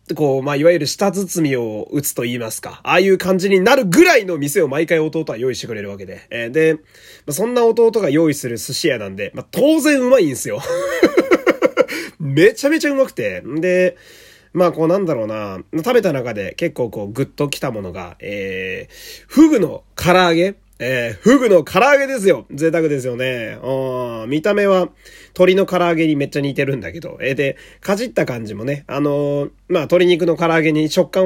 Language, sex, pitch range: Japanese, male, 125-190 Hz